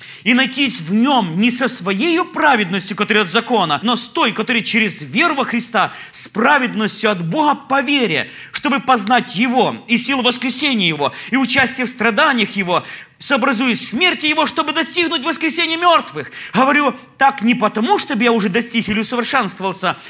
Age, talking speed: 30-49, 160 wpm